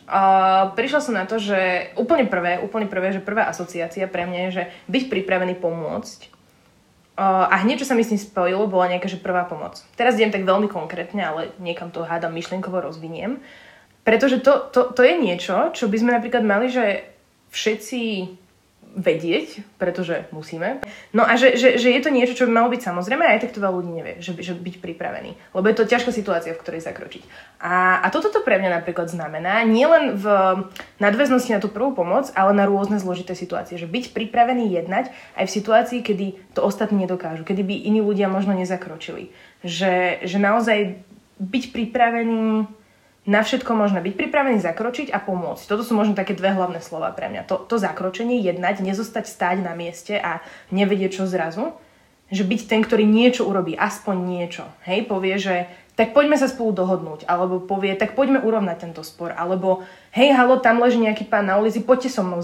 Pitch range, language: 180-230 Hz, Slovak